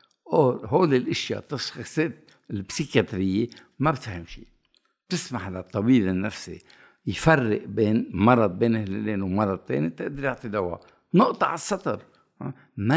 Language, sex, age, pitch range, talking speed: Arabic, male, 60-79, 110-150 Hz, 120 wpm